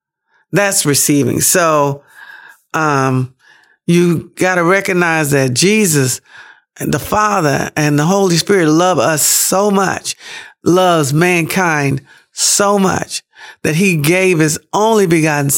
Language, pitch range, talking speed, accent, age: English, 145-185 Hz, 115 wpm, American, 50-69